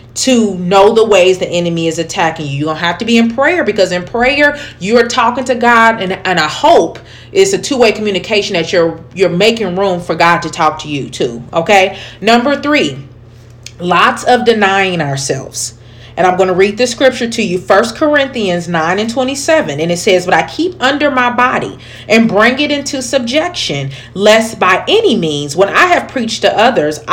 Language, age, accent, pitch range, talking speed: English, 40-59, American, 170-225 Hz, 195 wpm